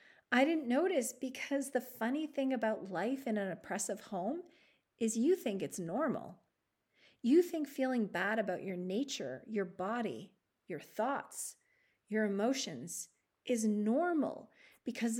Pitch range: 200-260 Hz